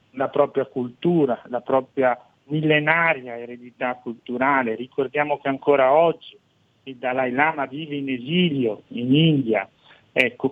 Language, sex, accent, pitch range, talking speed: Italian, male, native, 125-145 Hz, 120 wpm